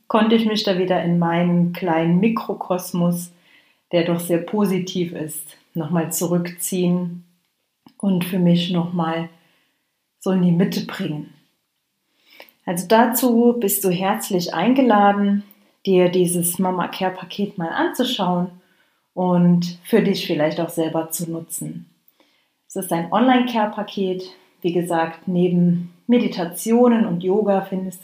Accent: German